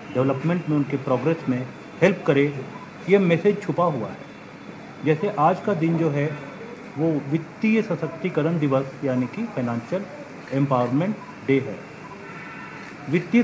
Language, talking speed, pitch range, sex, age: Urdu, 130 wpm, 140-180 Hz, male, 40-59